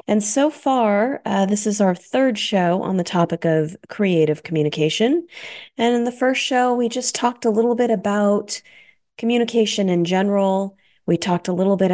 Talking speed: 175 wpm